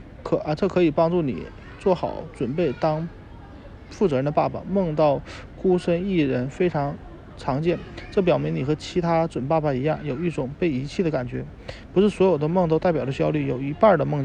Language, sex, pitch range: Chinese, male, 135-170 Hz